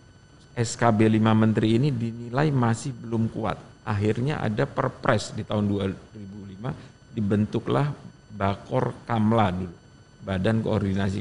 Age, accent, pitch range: 50-69, native, 100-125 Hz